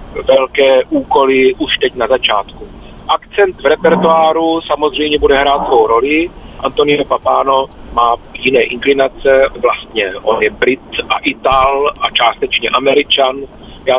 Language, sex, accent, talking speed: Czech, male, native, 125 wpm